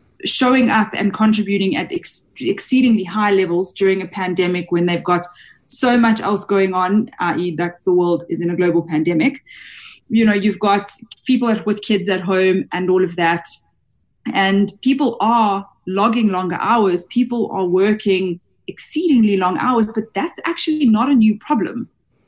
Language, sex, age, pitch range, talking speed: English, female, 20-39, 185-235 Hz, 160 wpm